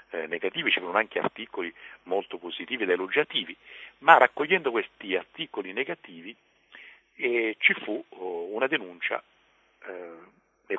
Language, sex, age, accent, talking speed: Italian, male, 50-69, native, 130 wpm